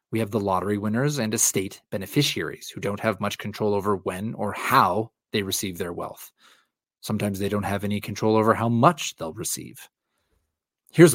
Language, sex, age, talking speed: English, male, 30-49, 180 wpm